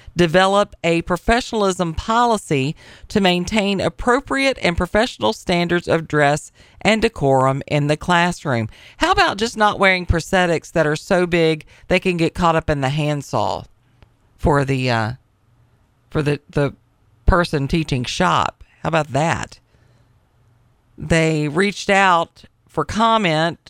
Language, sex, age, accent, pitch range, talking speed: English, female, 50-69, American, 130-175 Hz, 125 wpm